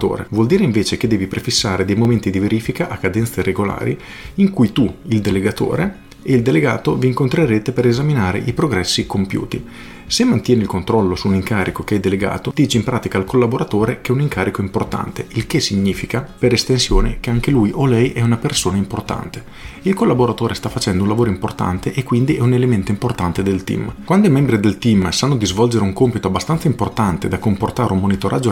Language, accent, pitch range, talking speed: Italian, native, 95-125 Hz, 200 wpm